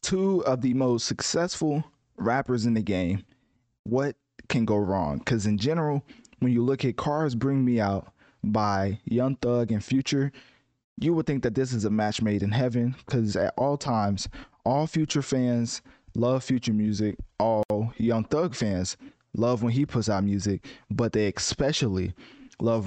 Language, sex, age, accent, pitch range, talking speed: English, male, 20-39, American, 105-135 Hz, 170 wpm